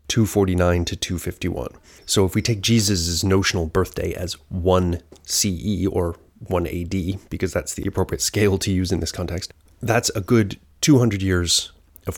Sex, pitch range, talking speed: male, 85-105 Hz, 160 wpm